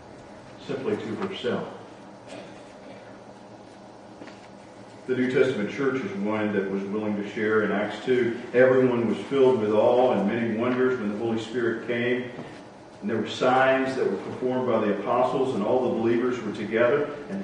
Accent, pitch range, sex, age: American, 105-125 Hz, male, 50-69